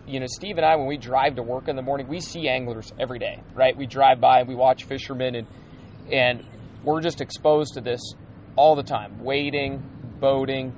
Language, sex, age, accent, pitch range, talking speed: English, male, 30-49, American, 125-145 Hz, 205 wpm